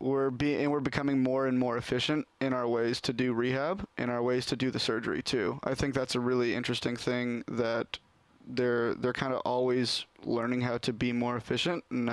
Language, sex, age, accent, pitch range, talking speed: English, male, 20-39, American, 120-135 Hz, 215 wpm